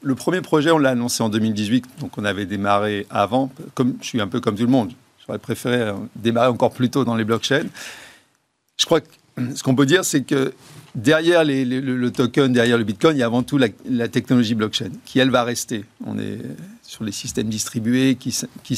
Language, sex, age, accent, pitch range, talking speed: French, male, 50-69, French, 110-135 Hz, 220 wpm